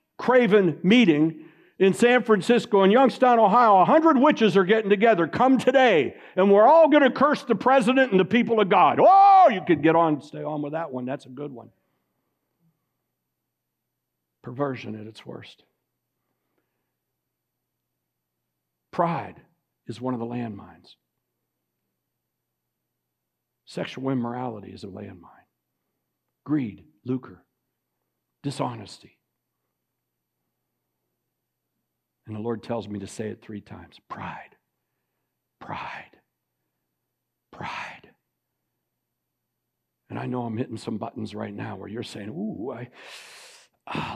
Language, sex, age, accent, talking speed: English, male, 60-79, American, 120 wpm